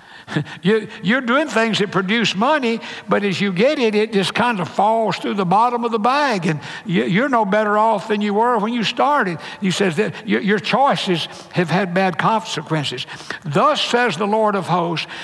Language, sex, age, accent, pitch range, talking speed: English, male, 60-79, American, 170-220 Hz, 190 wpm